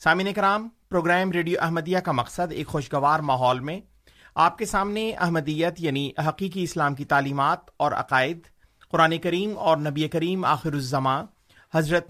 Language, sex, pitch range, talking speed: Urdu, male, 145-185 Hz, 150 wpm